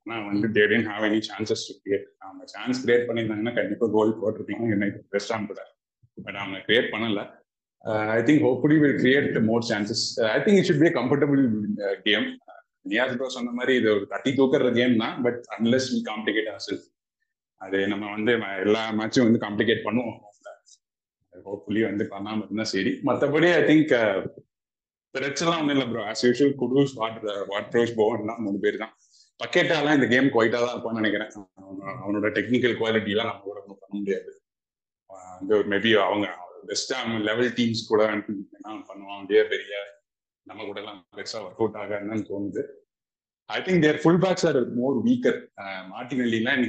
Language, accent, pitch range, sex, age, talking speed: Tamil, native, 105-130 Hz, male, 20-39, 40 wpm